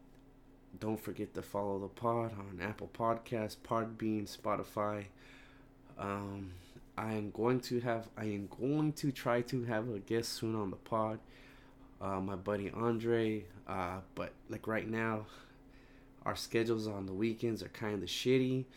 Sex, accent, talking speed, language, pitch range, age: male, American, 155 wpm, English, 100-115 Hz, 20-39